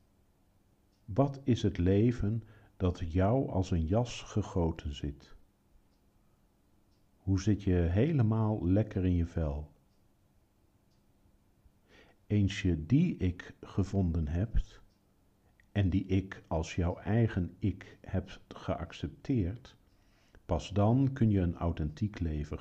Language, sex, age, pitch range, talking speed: Dutch, male, 50-69, 85-105 Hz, 110 wpm